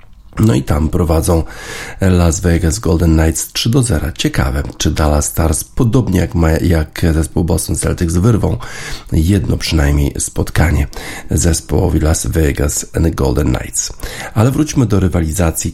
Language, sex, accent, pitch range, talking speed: Polish, male, native, 80-100 Hz, 135 wpm